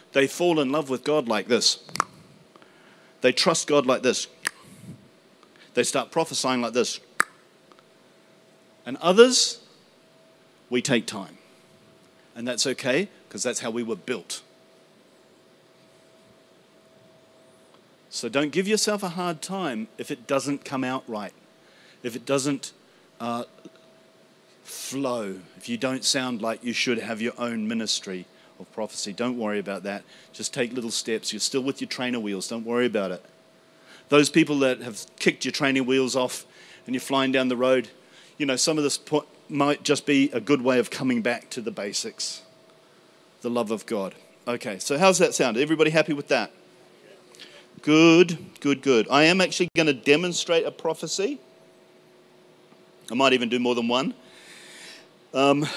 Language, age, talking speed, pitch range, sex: English, 40-59, 155 wpm, 120-150 Hz, male